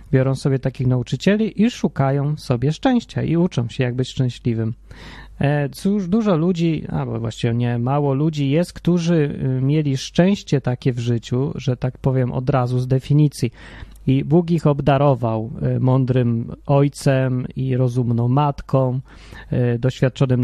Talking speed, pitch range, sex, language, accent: 135 wpm, 125-155 Hz, male, Polish, native